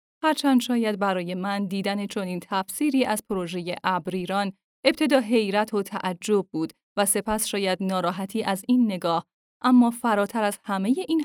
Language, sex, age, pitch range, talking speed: Persian, female, 10-29, 185-250 Hz, 145 wpm